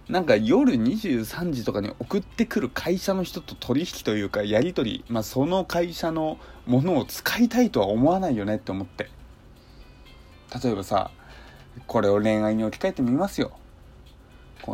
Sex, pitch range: male, 110-175 Hz